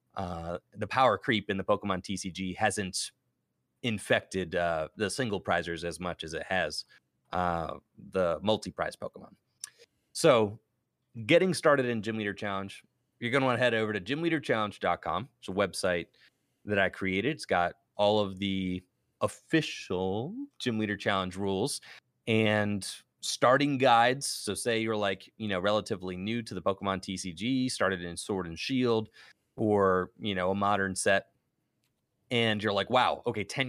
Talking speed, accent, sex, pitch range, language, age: 155 wpm, American, male, 95-120 Hz, English, 30-49